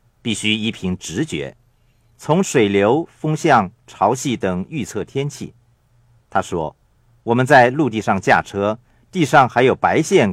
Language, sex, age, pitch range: Chinese, male, 50-69, 105-125 Hz